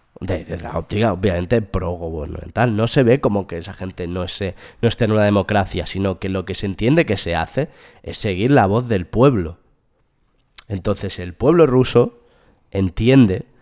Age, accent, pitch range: 20-39, Spanish, 100-130 Hz